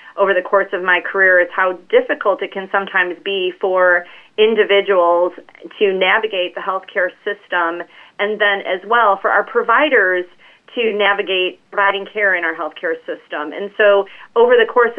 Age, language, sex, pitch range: 30-49, English, female, 180-200 Hz